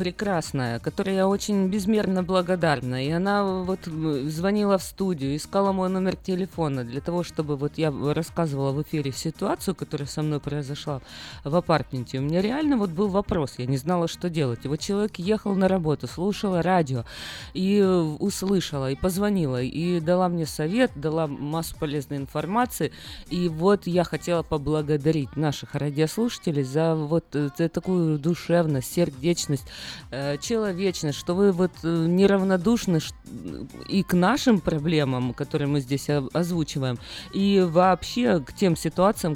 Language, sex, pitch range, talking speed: Russian, female, 145-190 Hz, 140 wpm